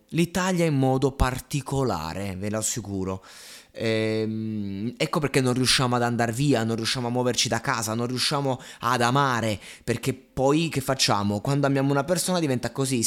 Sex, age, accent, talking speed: male, 20-39, native, 160 wpm